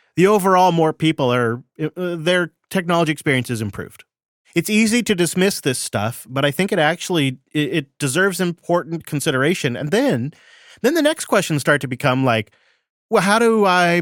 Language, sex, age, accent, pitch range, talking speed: English, male, 30-49, American, 125-165 Hz, 175 wpm